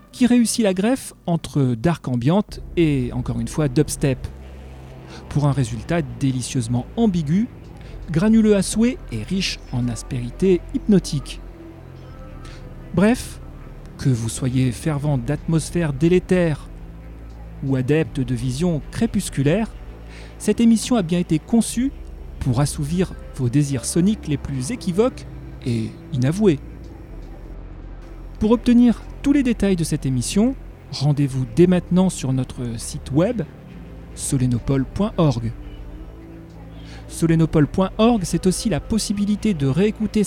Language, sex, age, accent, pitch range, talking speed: French, male, 40-59, French, 130-200 Hz, 115 wpm